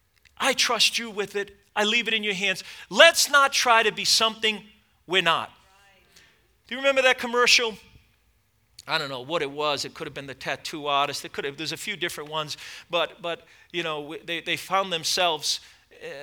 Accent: American